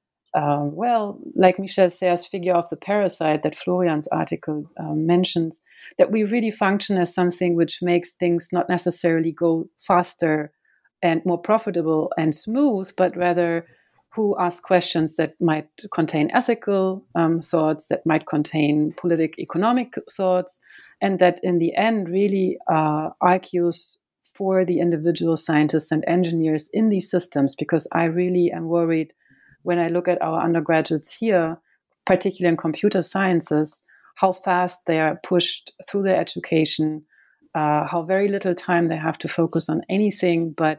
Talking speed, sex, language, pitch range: 150 wpm, female, English, 160-180 Hz